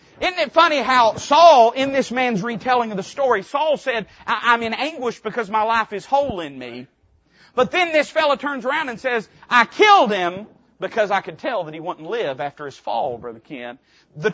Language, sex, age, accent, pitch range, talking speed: English, male, 40-59, American, 195-245 Hz, 205 wpm